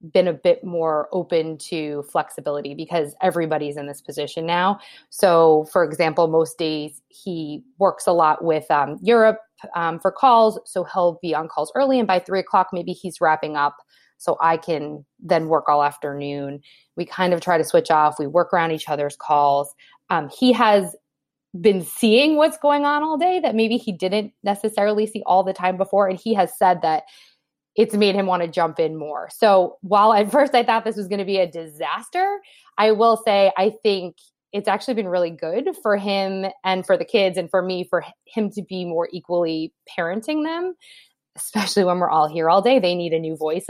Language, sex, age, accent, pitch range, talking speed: English, female, 20-39, American, 160-215 Hz, 200 wpm